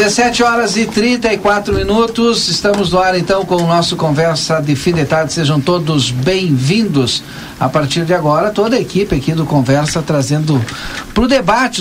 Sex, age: male, 60-79